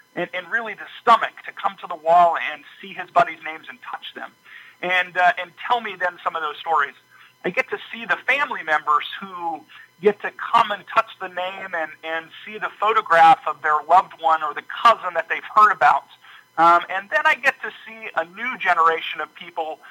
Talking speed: 215 wpm